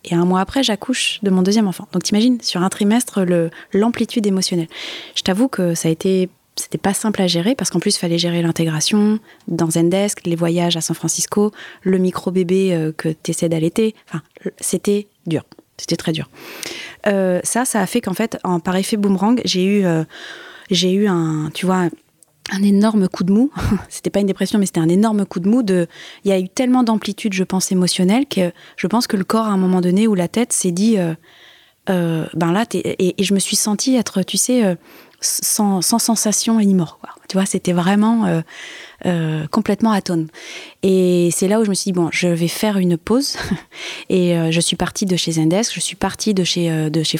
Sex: female